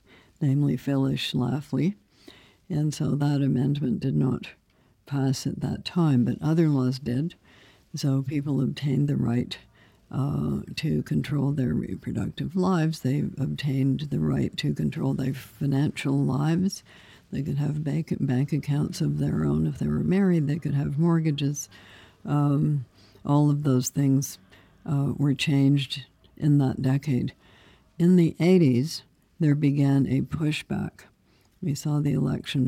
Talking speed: 140 wpm